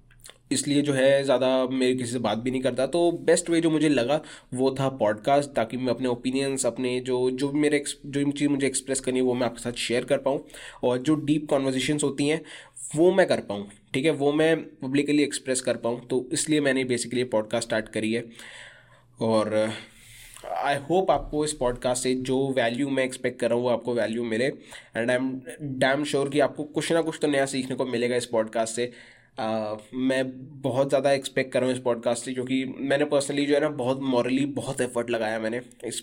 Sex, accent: male, native